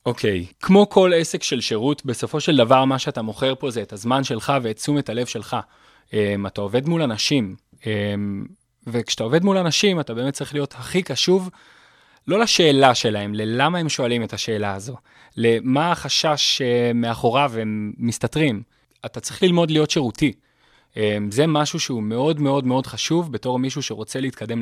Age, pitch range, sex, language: 20-39, 115-150 Hz, male, Hebrew